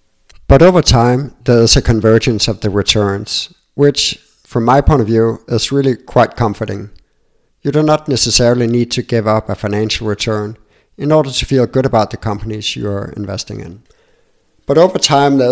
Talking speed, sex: 180 wpm, male